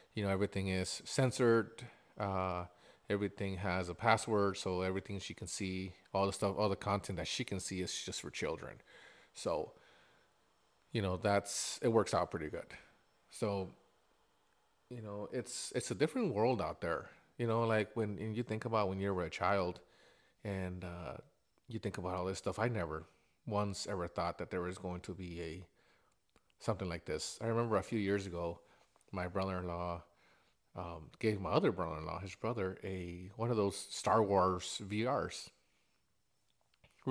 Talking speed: 175 wpm